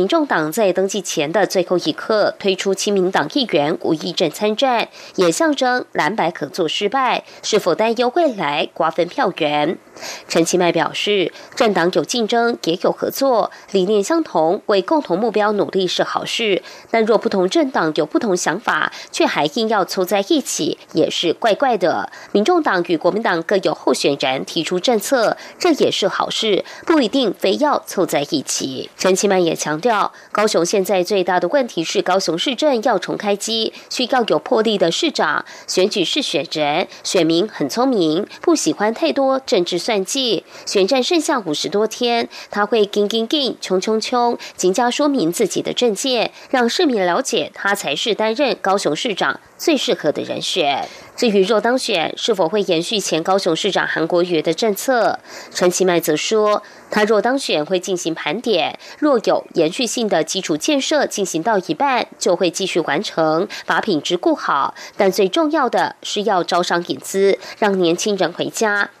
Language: French